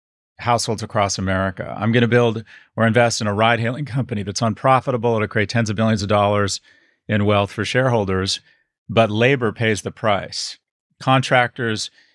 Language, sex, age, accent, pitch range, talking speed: English, male, 40-59, American, 100-120 Hz, 160 wpm